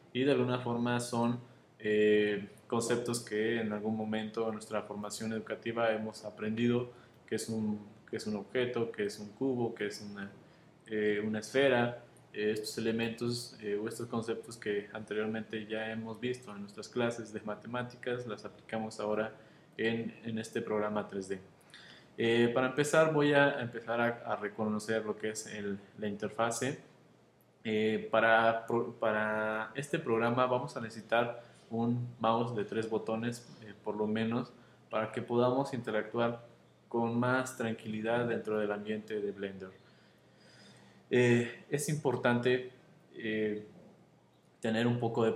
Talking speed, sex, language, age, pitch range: 145 wpm, male, Spanish, 20-39, 110-120 Hz